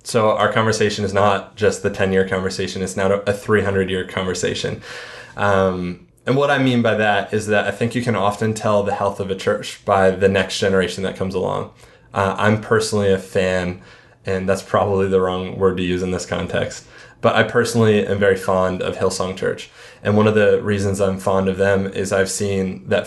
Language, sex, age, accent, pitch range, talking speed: English, male, 20-39, American, 95-110 Hz, 205 wpm